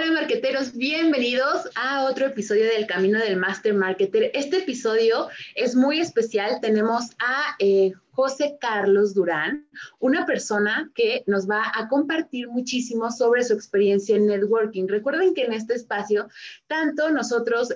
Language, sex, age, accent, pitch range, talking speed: Spanish, female, 20-39, Mexican, 200-265 Hz, 140 wpm